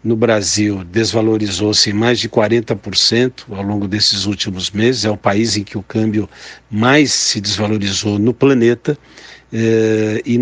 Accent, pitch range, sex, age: Brazilian, 105-135 Hz, male, 60-79